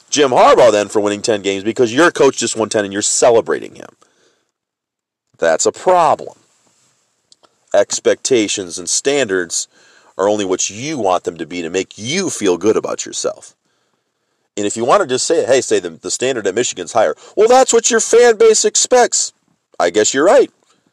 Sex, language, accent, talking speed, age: male, English, American, 185 wpm, 40-59